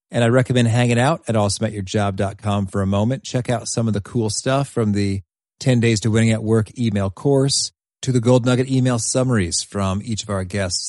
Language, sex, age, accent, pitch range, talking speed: English, male, 30-49, American, 105-130 Hz, 210 wpm